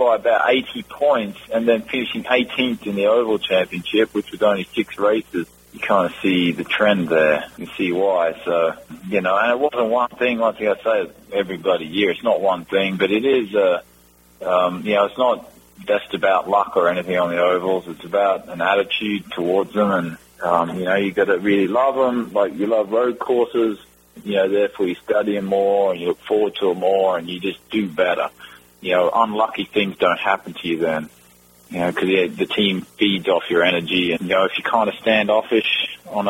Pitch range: 90-105 Hz